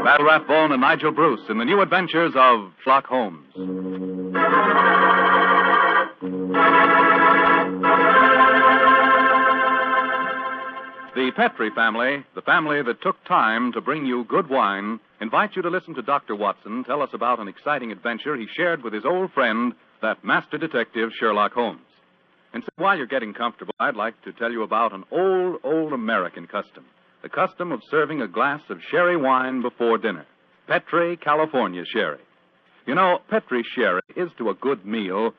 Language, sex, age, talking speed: English, male, 60-79, 150 wpm